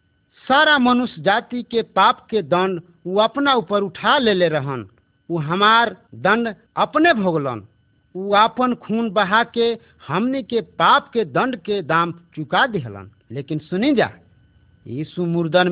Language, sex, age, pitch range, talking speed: Hindi, male, 50-69, 160-230 Hz, 140 wpm